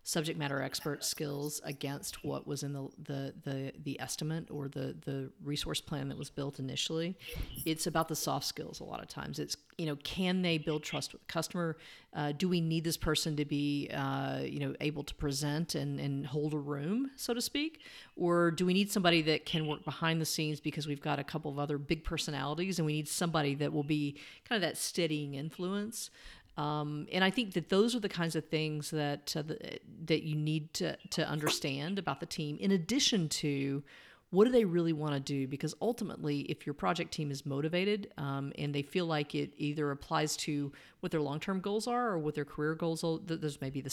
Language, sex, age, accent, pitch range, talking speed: English, female, 40-59, American, 145-170 Hz, 220 wpm